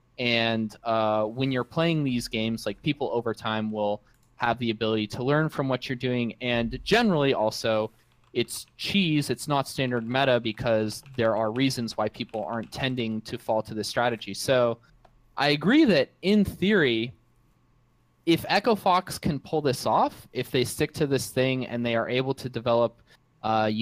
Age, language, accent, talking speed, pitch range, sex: 20-39, English, American, 175 wpm, 115-145 Hz, male